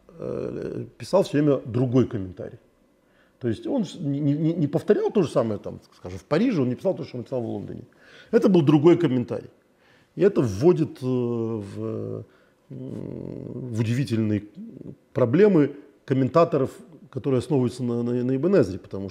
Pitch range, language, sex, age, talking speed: 105-135 Hz, Russian, male, 40-59, 140 wpm